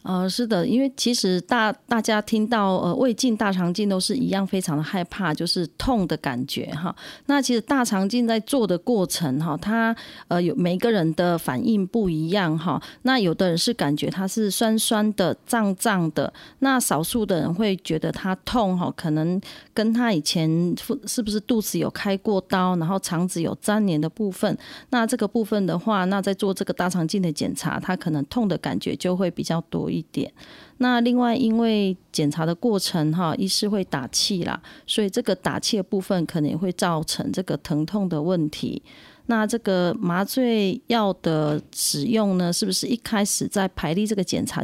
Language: Chinese